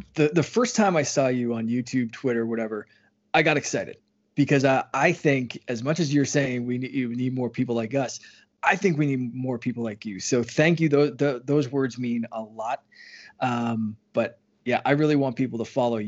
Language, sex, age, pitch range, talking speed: English, male, 20-39, 120-145 Hz, 215 wpm